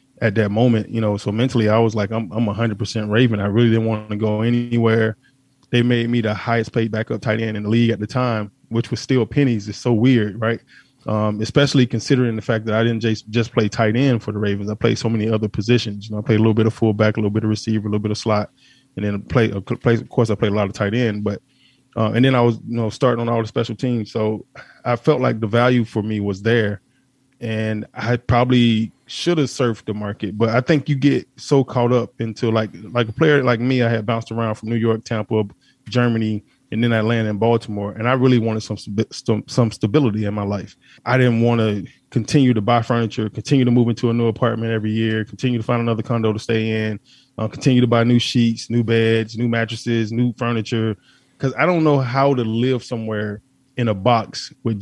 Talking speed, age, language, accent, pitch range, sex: 240 wpm, 20-39, English, American, 110-125 Hz, male